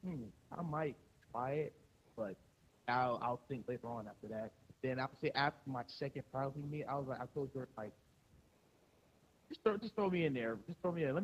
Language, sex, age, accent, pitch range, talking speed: English, male, 30-49, American, 125-155 Hz, 225 wpm